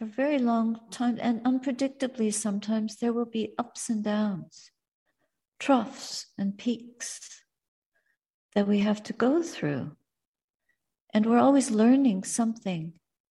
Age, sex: 60-79, female